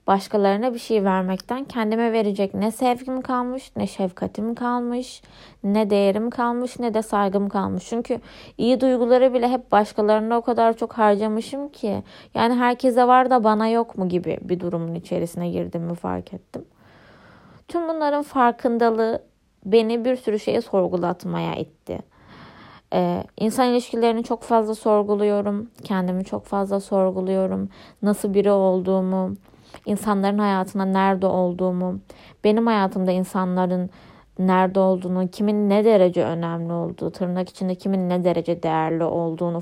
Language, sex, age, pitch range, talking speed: Turkish, female, 20-39, 185-235 Hz, 130 wpm